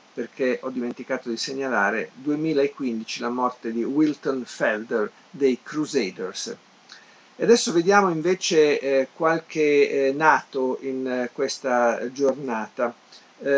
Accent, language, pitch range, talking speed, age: native, Italian, 130-155 Hz, 95 wpm, 50-69